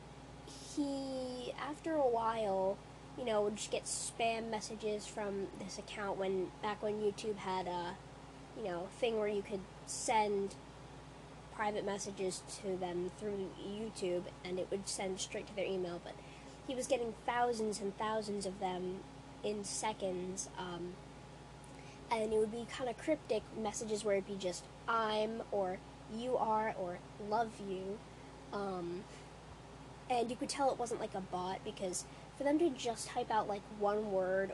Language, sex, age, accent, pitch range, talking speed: English, female, 20-39, American, 175-220 Hz, 160 wpm